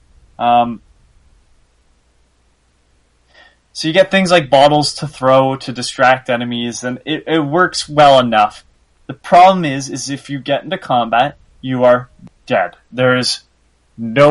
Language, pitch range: English, 110-150 Hz